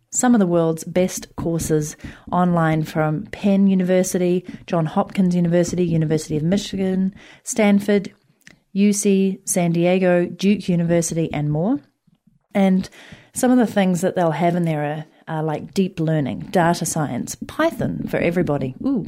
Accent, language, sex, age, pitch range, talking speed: Australian, English, female, 30-49, 170-210 Hz, 140 wpm